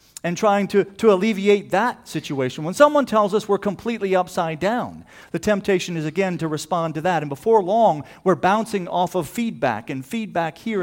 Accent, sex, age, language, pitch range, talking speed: American, male, 50-69, English, 115-180 Hz, 190 wpm